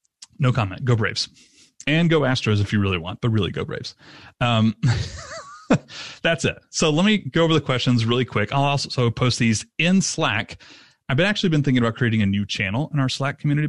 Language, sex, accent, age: English, male, American, 30-49